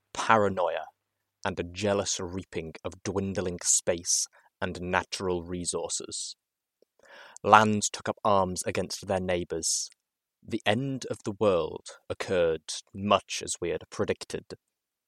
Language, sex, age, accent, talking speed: English, male, 20-39, British, 115 wpm